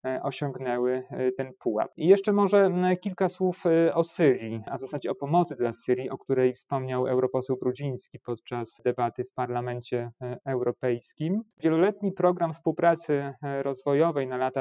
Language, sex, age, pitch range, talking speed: Polish, male, 30-49, 125-155 Hz, 135 wpm